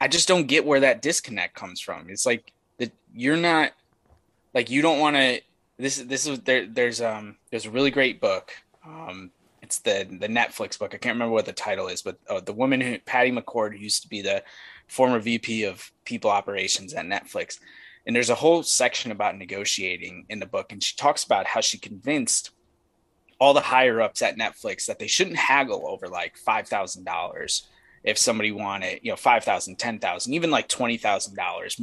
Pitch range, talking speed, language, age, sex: 115-150 Hz, 195 wpm, English, 20-39, male